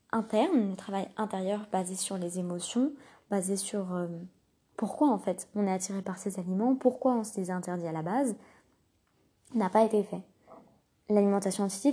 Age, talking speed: 20-39, 170 wpm